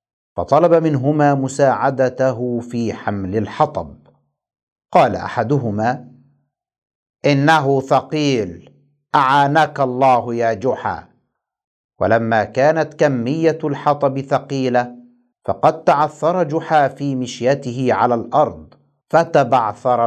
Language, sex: Arabic, male